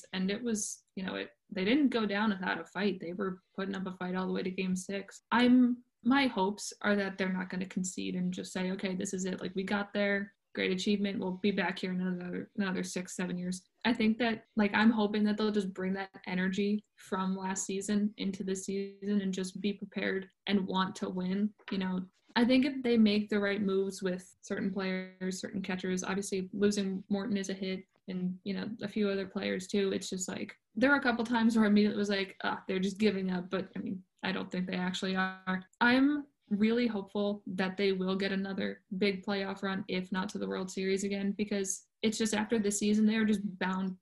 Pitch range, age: 190-210 Hz, 20-39